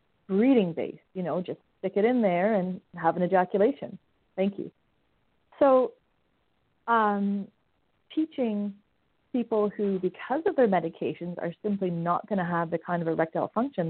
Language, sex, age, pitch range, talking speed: English, female, 30-49, 170-210 Hz, 150 wpm